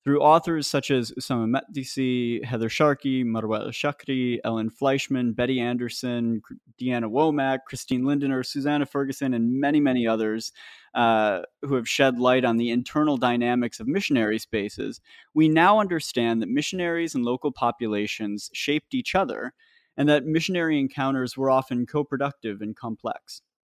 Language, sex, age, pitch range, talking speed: English, male, 30-49, 115-145 Hz, 140 wpm